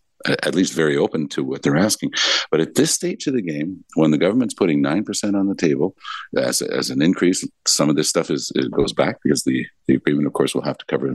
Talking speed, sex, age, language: 255 wpm, male, 60-79, English